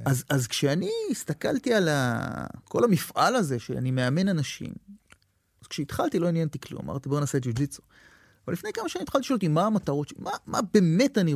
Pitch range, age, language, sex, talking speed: 120-195 Hz, 30-49, Hebrew, male, 190 wpm